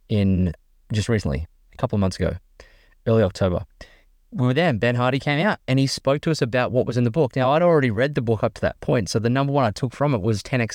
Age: 20-39